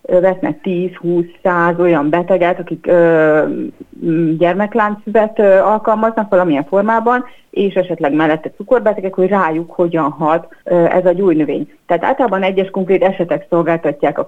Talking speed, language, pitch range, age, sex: 125 wpm, Hungarian, 165-210 Hz, 30-49, female